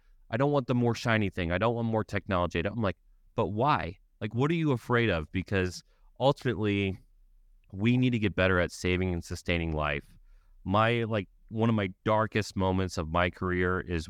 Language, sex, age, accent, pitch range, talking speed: English, male, 30-49, American, 85-105 Hz, 190 wpm